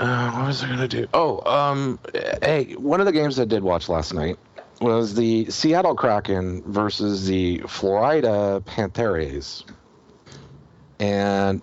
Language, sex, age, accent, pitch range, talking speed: English, male, 50-69, American, 85-115 Hz, 145 wpm